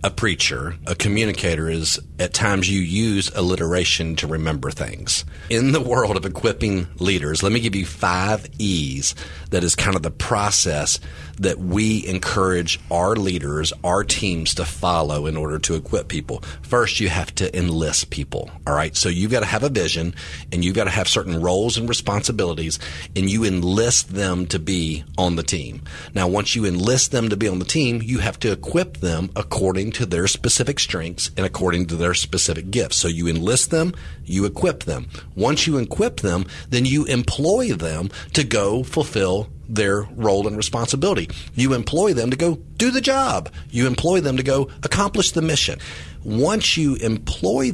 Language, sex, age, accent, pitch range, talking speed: English, male, 40-59, American, 80-110 Hz, 180 wpm